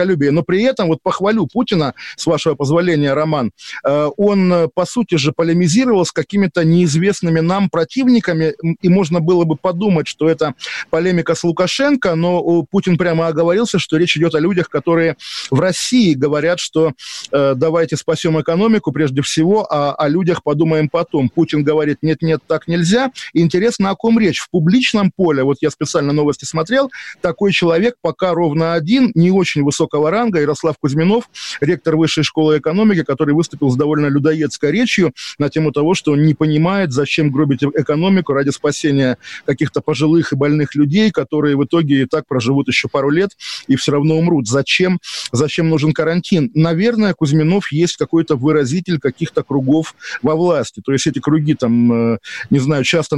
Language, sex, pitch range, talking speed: Russian, male, 150-180 Hz, 160 wpm